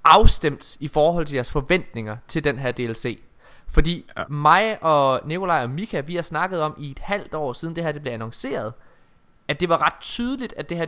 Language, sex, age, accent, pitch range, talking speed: Danish, male, 20-39, native, 130-175 Hz, 210 wpm